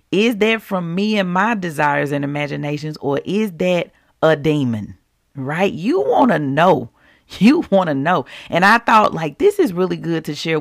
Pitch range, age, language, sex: 155-215 Hz, 40-59, English, female